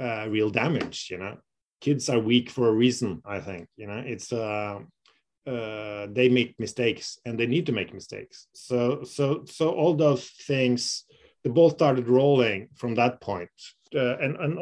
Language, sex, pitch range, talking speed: Dutch, male, 110-130 Hz, 175 wpm